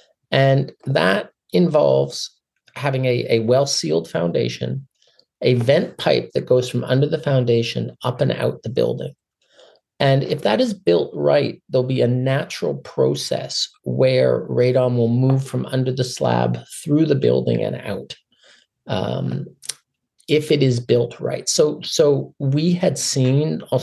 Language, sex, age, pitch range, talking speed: English, male, 40-59, 110-140 Hz, 145 wpm